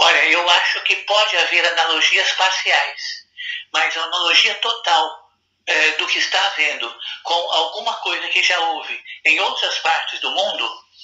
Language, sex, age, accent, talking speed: Portuguese, male, 60-79, Brazilian, 150 wpm